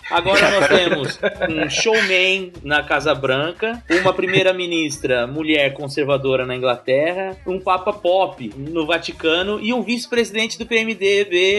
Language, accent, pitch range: Portuguese, Brazilian, 140-190 Hz